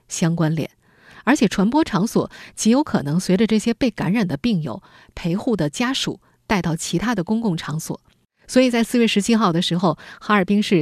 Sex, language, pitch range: female, Chinese, 170-220 Hz